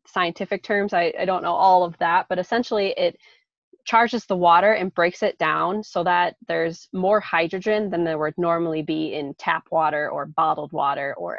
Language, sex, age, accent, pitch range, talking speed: English, female, 20-39, American, 170-210 Hz, 190 wpm